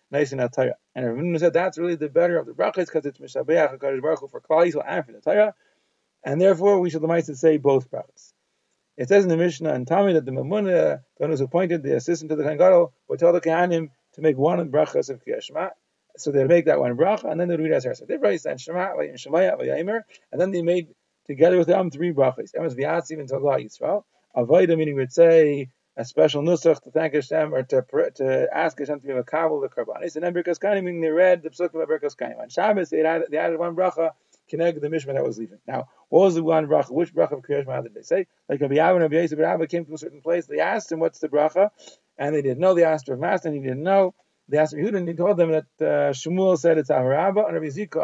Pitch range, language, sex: 155-180 Hz, English, male